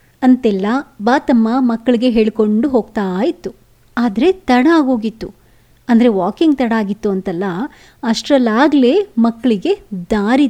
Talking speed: 95 wpm